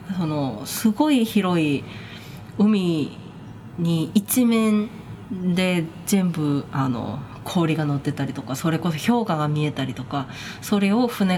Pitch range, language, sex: 145-205 Hz, Japanese, female